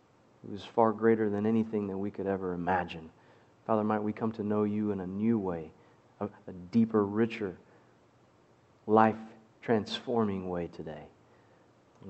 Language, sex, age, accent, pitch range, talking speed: English, male, 40-59, American, 110-140 Hz, 150 wpm